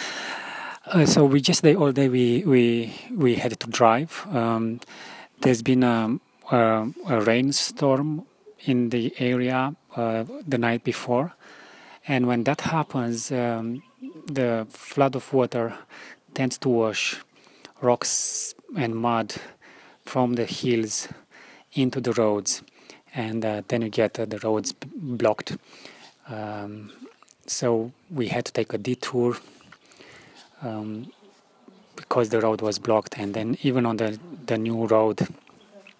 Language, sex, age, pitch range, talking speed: English, male, 30-49, 110-135 Hz, 130 wpm